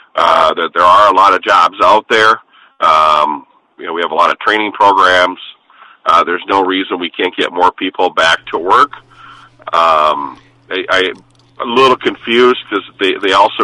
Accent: American